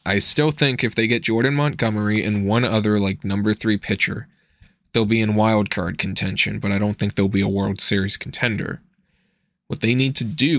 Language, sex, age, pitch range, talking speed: English, male, 20-39, 105-135 Hz, 205 wpm